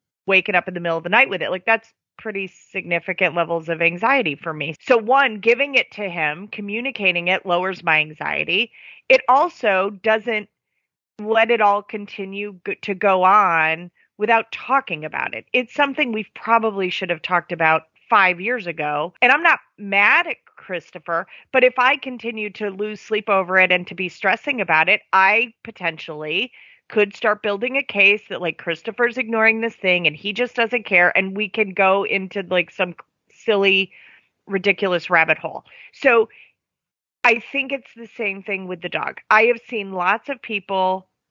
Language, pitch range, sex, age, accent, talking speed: English, 175-225 Hz, female, 30-49, American, 175 wpm